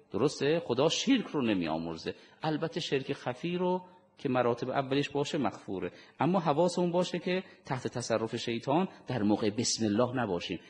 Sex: male